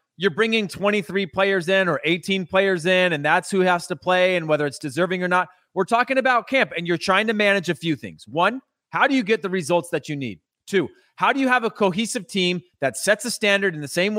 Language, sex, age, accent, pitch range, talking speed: English, male, 30-49, American, 160-195 Hz, 245 wpm